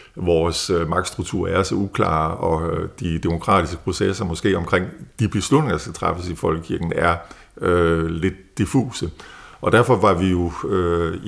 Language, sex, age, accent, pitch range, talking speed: Danish, male, 50-69, native, 85-100 Hz, 150 wpm